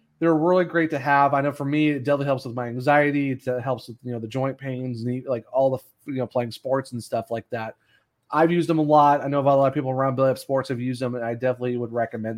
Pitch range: 125-145 Hz